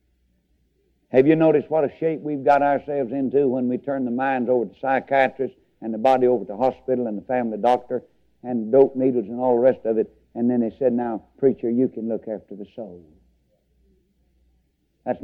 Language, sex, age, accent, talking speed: English, male, 60-79, American, 195 wpm